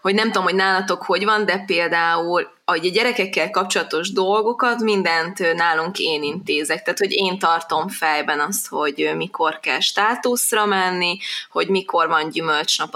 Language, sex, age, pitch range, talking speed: Hungarian, female, 20-39, 165-220 Hz, 150 wpm